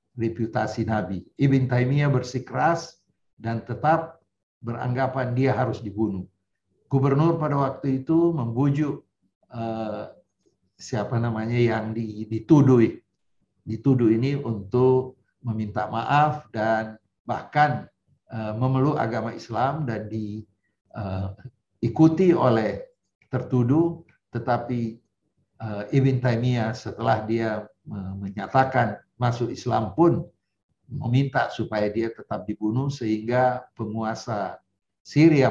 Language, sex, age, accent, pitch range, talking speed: Indonesian, male, 50-69, native, 105-130 Hz, 90 wpm